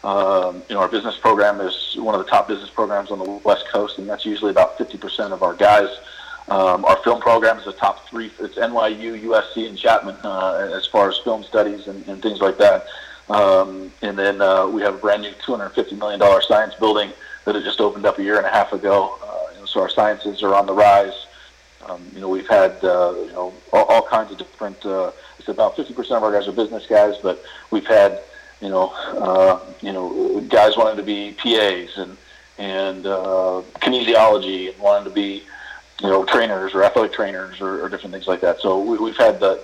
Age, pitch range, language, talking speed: 40-59, 95-110 Hz, English, 220 wpm